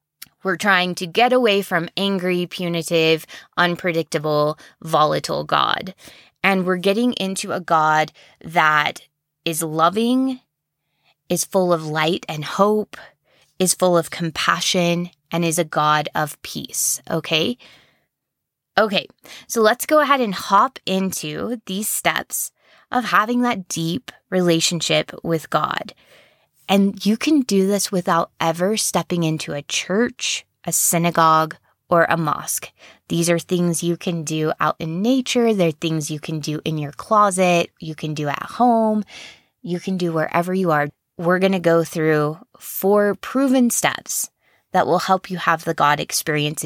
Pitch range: 160-195 Hz